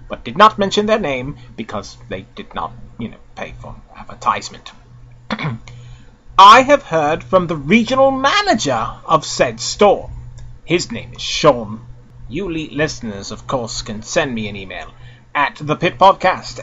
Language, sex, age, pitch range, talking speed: English, male, 30-49, 120-195 Hz, 145 wpm